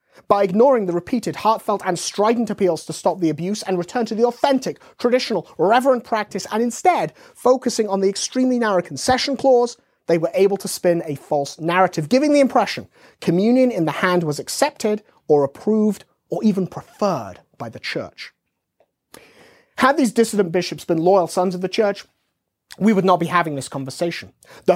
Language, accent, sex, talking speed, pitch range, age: English, British, male, 175 wpm, 165-230 Hz, 30-49